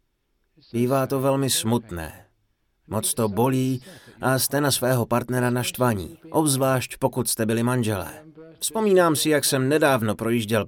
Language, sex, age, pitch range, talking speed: Czech, male, 30-49, 115-155 Hz, 135 wpm